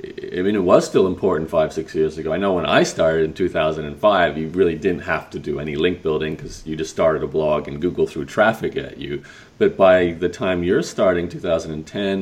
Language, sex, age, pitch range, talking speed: English, male, 30-49, 80-105 Hz, 220 wpm